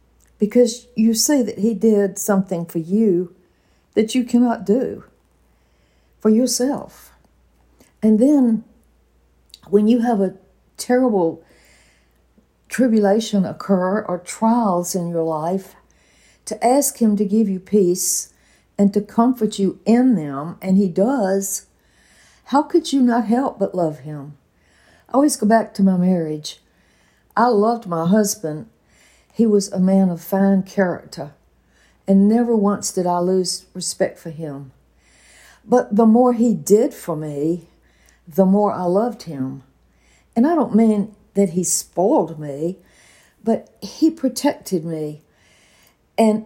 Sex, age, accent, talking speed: female, 60-79, American, 135 wpm